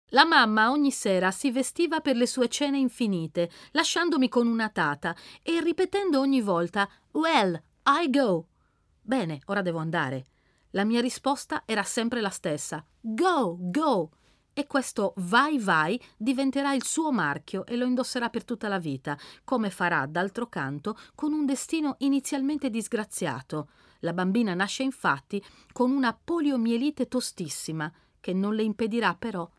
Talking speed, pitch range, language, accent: 145 wpm, 170-275 Hz, Italian, native